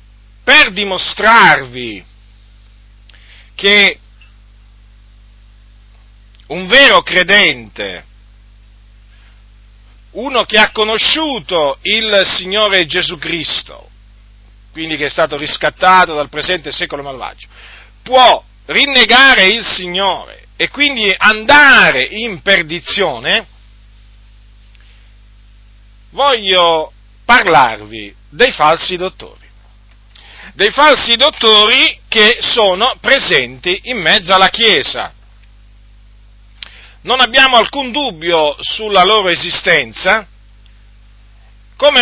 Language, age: Italian, 50-69